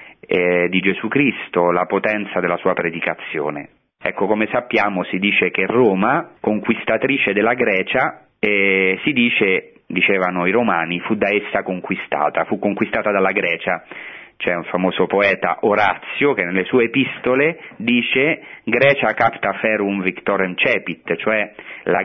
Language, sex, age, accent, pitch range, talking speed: Italian, male, 30-49, native, 95-120 Hz, 135 wpm